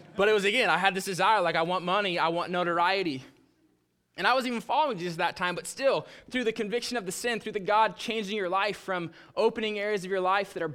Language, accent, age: English, American, 20-39